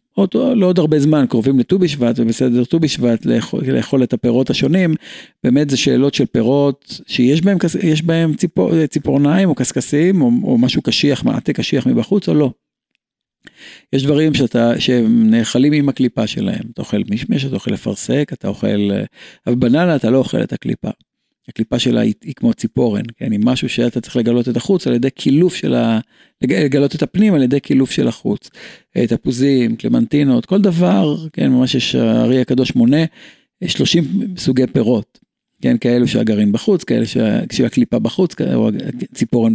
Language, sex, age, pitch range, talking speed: Hebrew, male, 50-69, 120-160 Hz, 160 wpm